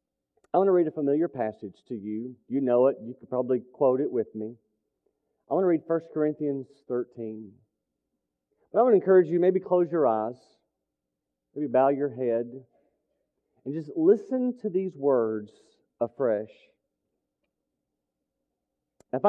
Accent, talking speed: American, 150 wpm